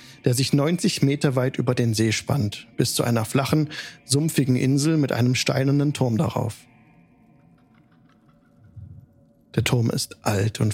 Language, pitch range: German, 115-140 Hz